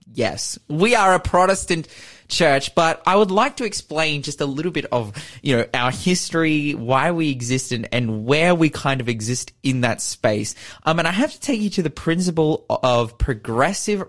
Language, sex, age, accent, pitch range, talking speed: English, male, 20-39, Australian, 120-160 Hz, 195 wpm